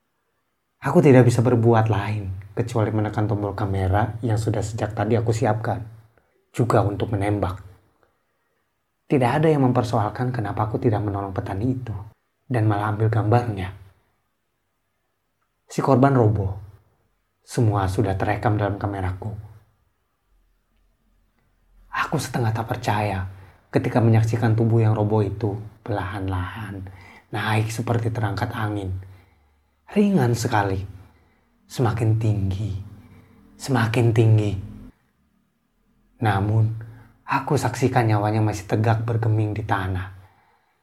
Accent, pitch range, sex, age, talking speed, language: native, 100-125 Hz, male, 30-49, 105 wpm, Indonesian